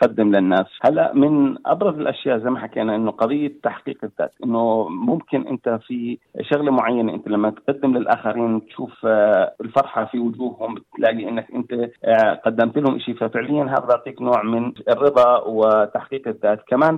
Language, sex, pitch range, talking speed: Arabic, male, 115-140 Hz, 150 wpm